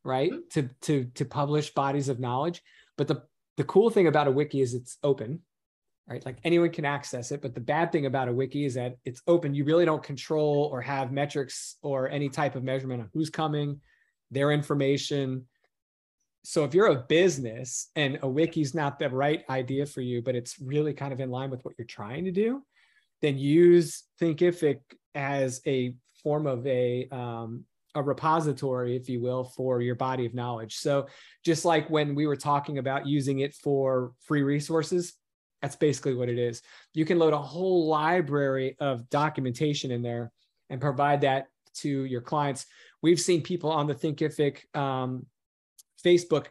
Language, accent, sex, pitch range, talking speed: English, American, male, 130-155 Hz, 185 wpm